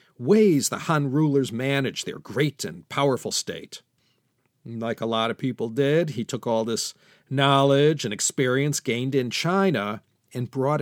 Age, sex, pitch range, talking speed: 50-69, male, 120-155 Hz, 155 wpm